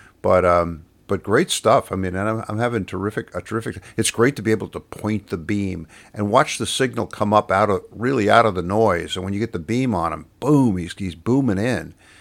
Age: 50-69